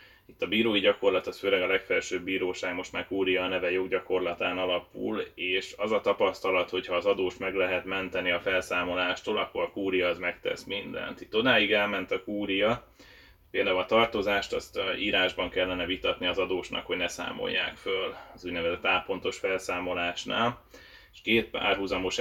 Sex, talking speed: male, 160 wpm